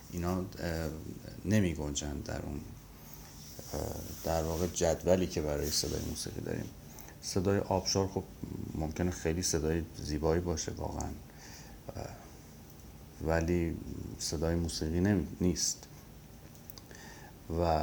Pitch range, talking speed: 80-95 Hz, 90 wpm